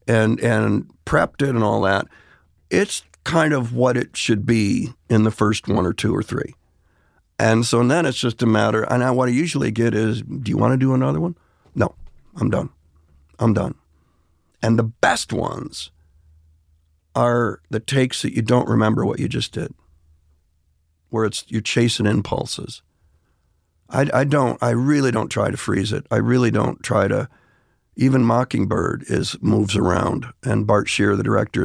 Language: English